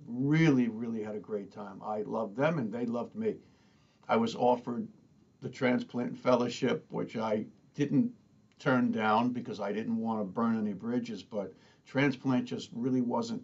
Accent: American